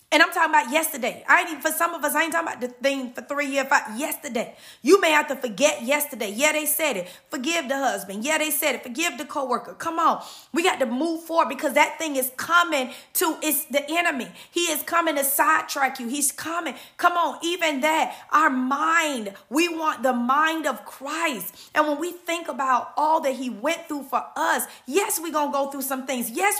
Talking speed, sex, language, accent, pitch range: 220 wpm, female, English, American, 265-330 Hz